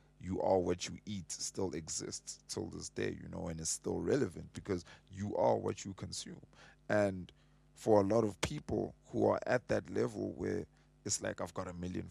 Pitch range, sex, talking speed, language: 85-105 Hz, male, 200 wpm, English